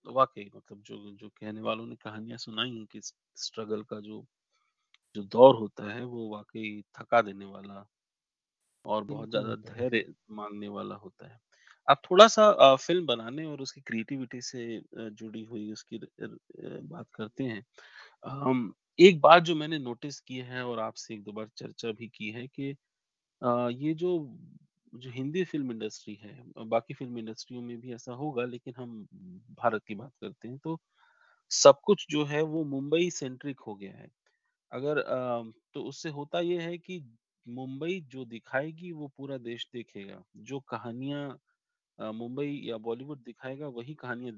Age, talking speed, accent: 30-49, 130 wpm, native